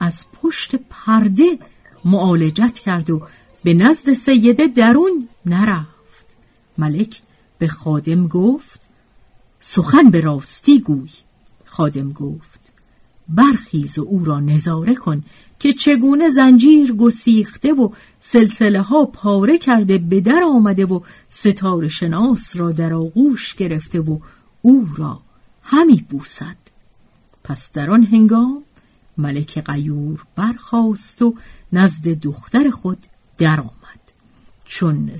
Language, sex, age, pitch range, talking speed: Persian, female, 50-69, 155-240 Hz, 105 wpm